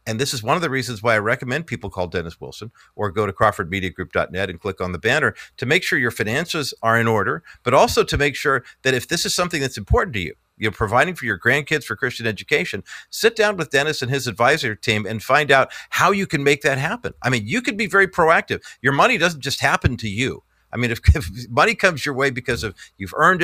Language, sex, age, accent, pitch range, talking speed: English, male, 50-69, American, 100-120 Hz, 245 wpm